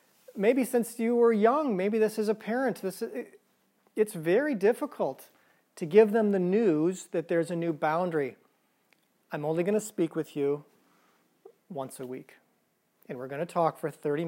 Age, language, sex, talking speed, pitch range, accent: 40-59, English, male, 170 wpm, 160-200 Hz, American